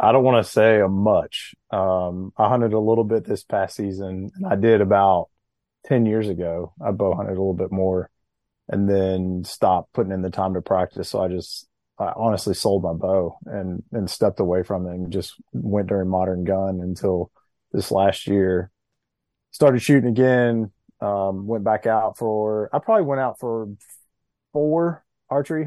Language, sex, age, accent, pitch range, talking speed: English, male, 30-49, American, 95-110 Hz, 180 wpm